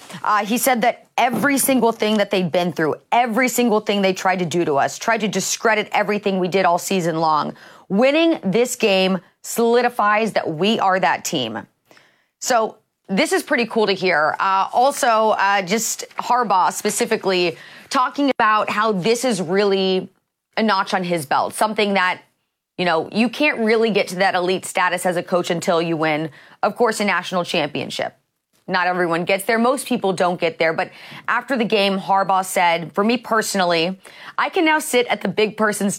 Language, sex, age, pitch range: English, female, 30-49, 180-225 Hz